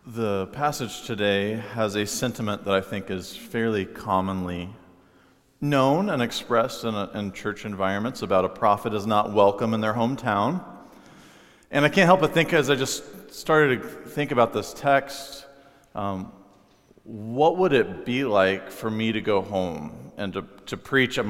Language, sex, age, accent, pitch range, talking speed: English, male, 40-59, American, 105-130 Hz, 165 wpm